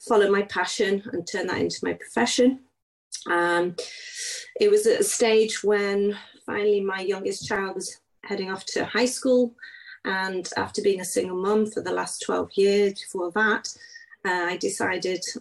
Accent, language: British, English